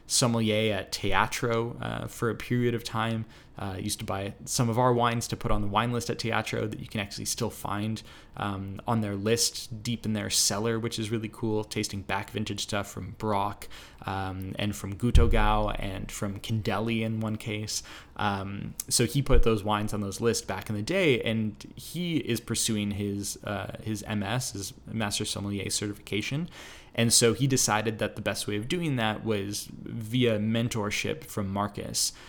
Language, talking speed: English, 185 wpm